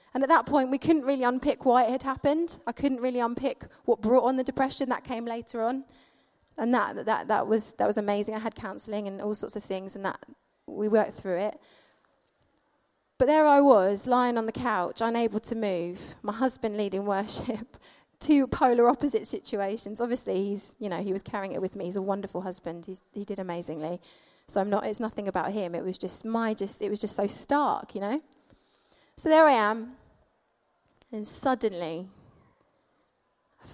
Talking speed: 195 wpm